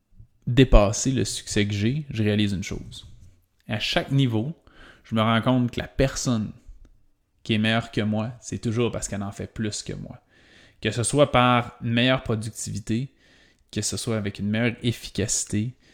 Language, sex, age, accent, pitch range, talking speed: French, male, 20-39, Canadian, 105-120 Hz, 175 wpm